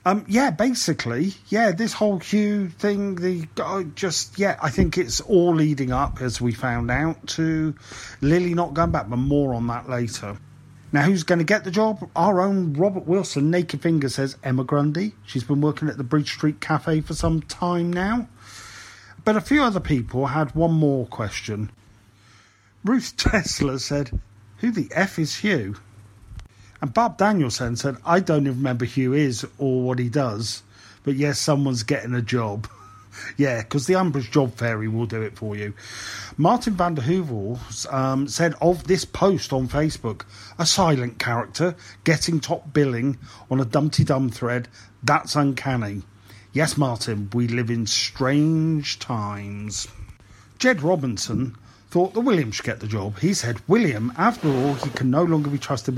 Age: 40-59